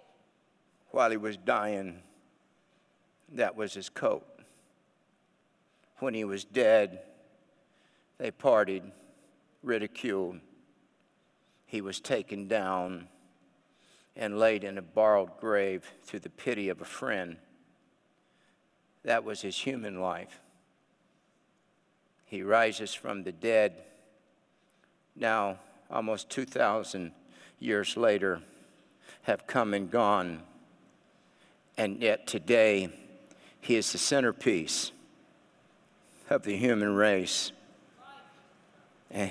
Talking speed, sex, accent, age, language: 95 wpm, male, American, 50-69, English